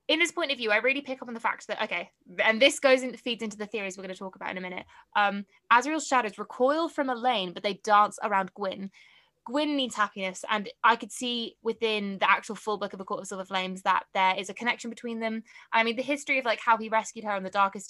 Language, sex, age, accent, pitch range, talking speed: English, female, 20-39, British, 190-230 Hz, 265 wpm